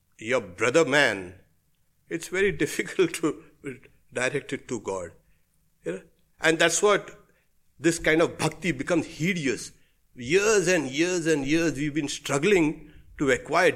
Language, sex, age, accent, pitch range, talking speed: English, male, 60-79, Indian, 110-170 Hz, 125 wpm